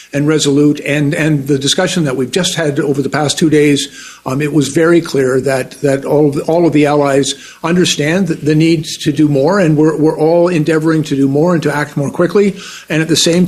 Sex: male